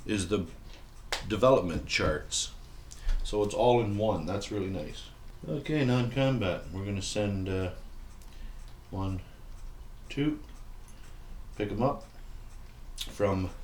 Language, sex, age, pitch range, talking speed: English, male, 50-69, 95-115 Hz, 105 wpm